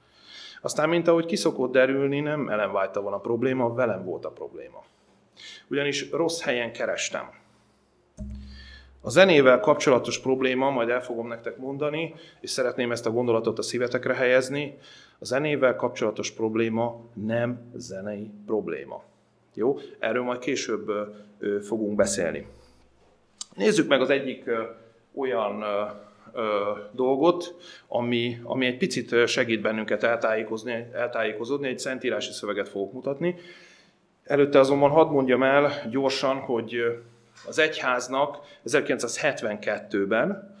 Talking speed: 120 wpm